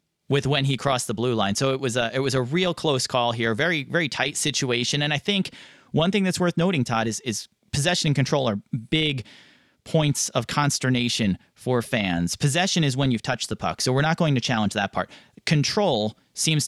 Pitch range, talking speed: 125-170 Hz, 215 wpm